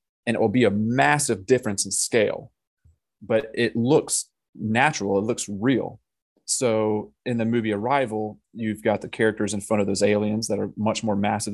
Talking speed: 180 wpm